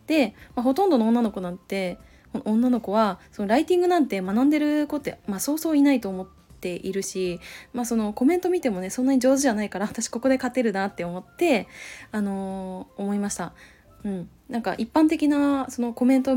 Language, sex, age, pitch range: Japanese, female, 20-39, 200-275 Hz